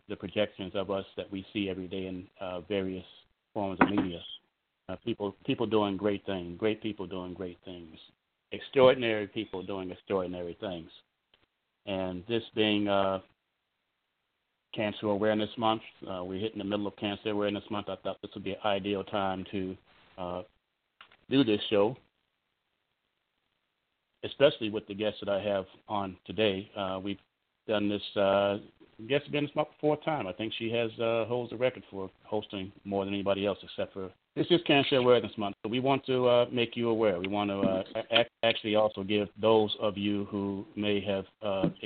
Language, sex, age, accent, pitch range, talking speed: English, male, 40-59, American, 95-110 Hz, 175 wpm